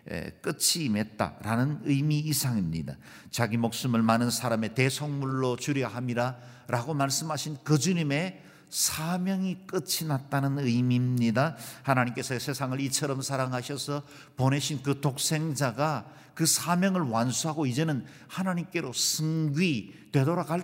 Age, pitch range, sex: 50-69, 115-155 Hz, male